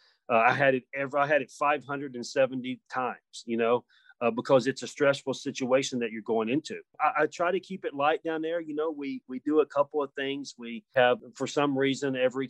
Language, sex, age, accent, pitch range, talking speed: English, male, 40-59, American, 120-145 Hz, 220 wpm